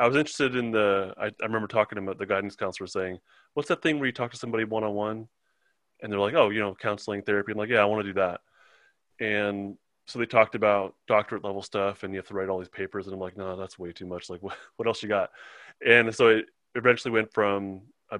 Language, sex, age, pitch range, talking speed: English, male, 20-39, 95-110 Hz, 250 wpm